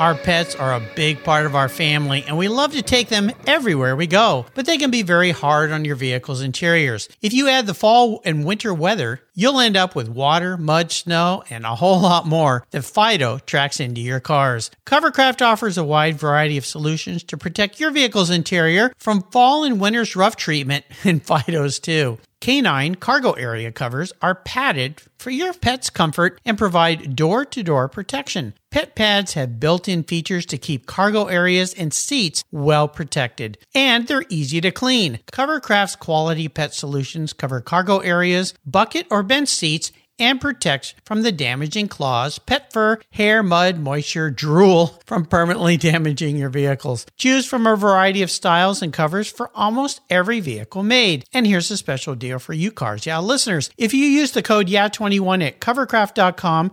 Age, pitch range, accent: 50-69, 150-215 Hz, American